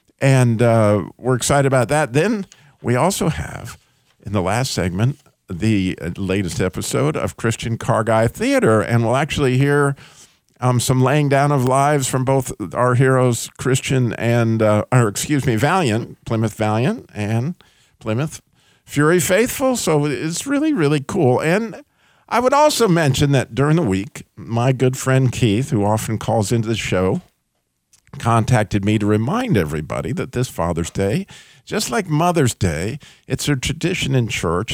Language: English